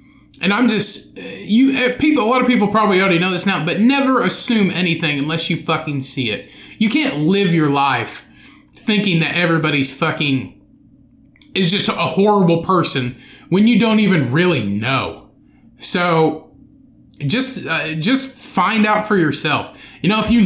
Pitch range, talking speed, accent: 145-195 Hz, 160 wpm, American